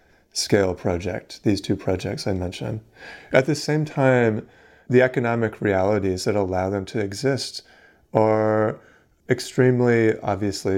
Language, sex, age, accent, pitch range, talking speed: English, male, 30-49, American, 100-120 Hz, 120 wpm